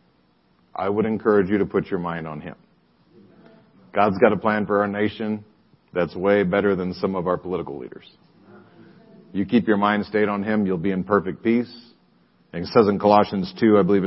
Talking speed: 195 wpm